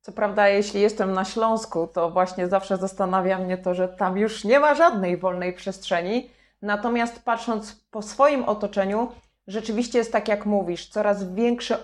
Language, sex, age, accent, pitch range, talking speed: Polish, female, 20-39, native, 195-225 Hz, 160 wpm